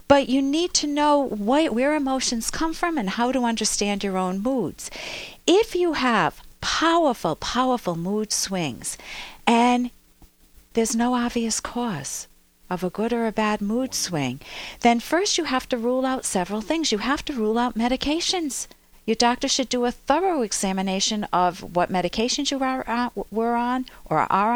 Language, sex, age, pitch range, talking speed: English, female, 50-69, 195-270 Hz, 165 wpm